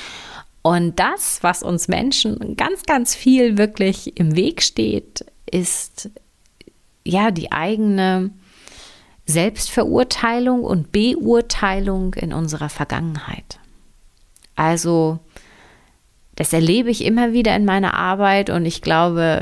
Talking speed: 105 wpm